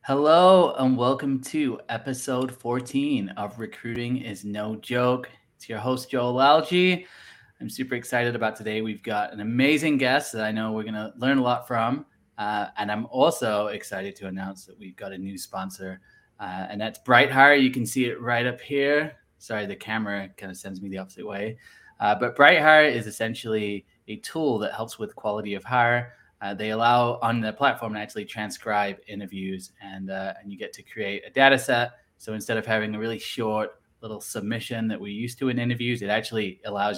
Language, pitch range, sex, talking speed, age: English, 105-130 Hz, male, 195 wpm, 20-39